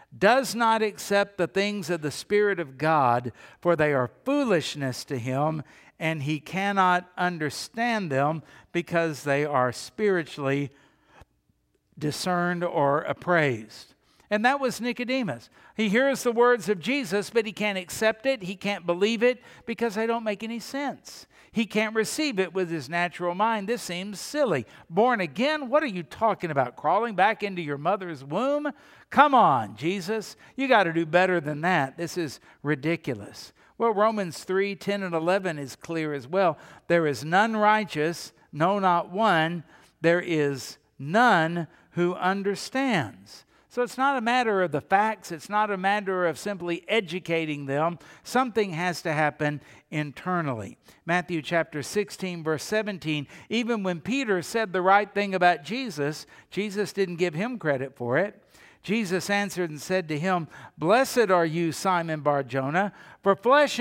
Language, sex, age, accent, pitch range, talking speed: English, male, 60-79, American, 155-215 Hz, 155 wpm